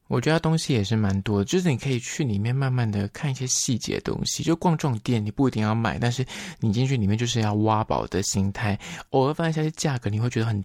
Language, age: Chinese, 20-39